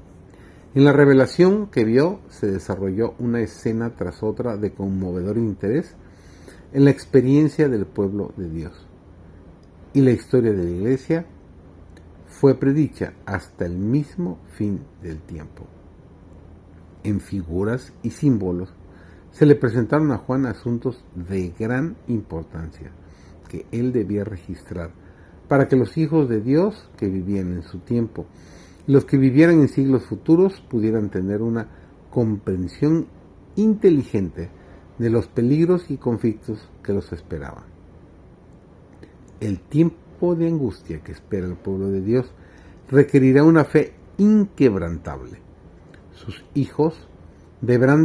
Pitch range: 90-130 Hz